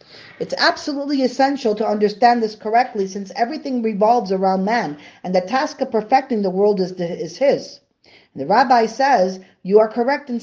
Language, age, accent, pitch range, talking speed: English, 40-59, American, 195-255 Hz, 165 wpm